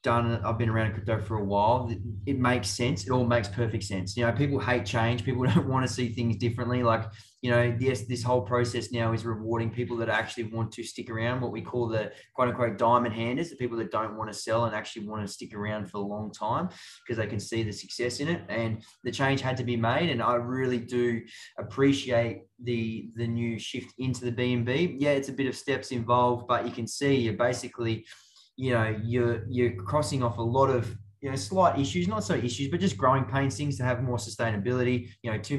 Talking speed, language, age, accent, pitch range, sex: 230 wpm, English, 20-39, Australian, 115-125 Hz, male